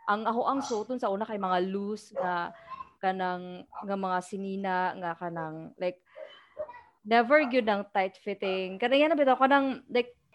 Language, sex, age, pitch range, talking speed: English, female, 20-39, 190-240 Hz, 155 wpm